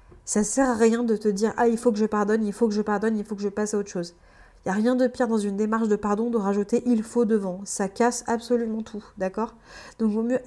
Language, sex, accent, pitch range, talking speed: French, female, French, 205-235 Hz, 290 wpm